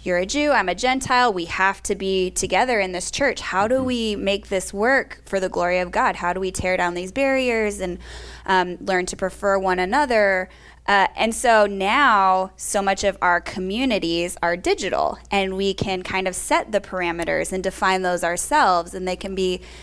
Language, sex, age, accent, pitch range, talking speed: English, female, 20-39, American, 180-210 Hz, 200 wpm